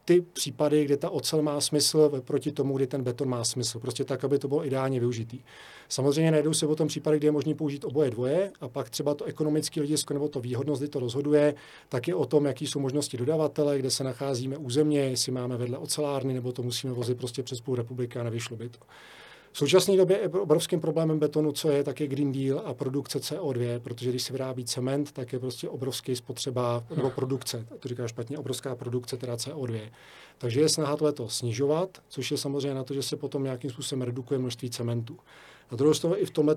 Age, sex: 40-59, male